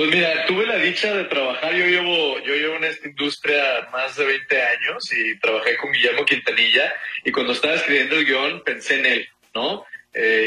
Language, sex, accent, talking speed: Spanish, male, Mexican, 195 wpm